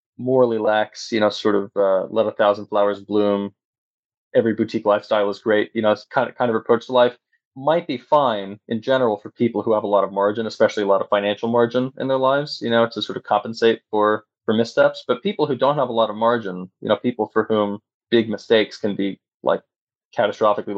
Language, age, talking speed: English, 20-39, 225 wpm